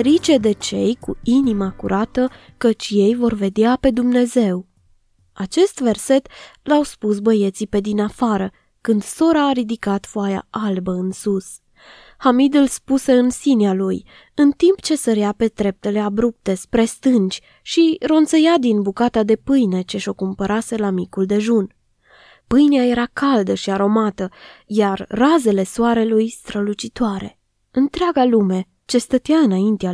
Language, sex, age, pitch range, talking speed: Romanian, female, 20-39, 200-270 Hz, 140 wpm